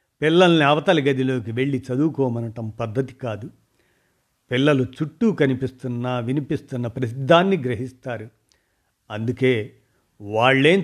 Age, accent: 50-69, native